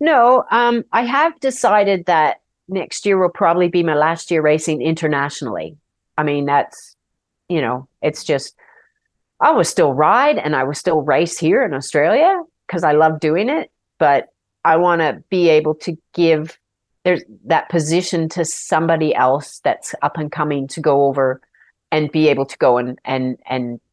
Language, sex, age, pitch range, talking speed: English, female, 40-59, 155-220 Hz, 175 wpm